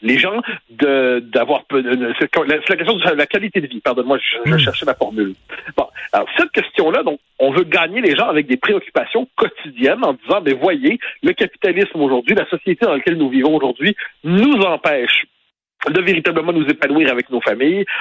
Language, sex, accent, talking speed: French, male, French, 185 wpm